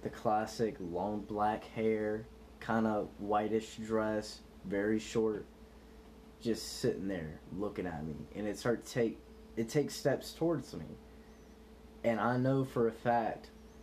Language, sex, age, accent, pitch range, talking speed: English, male, 10-29, American, 110-125 Hz, 145 wpm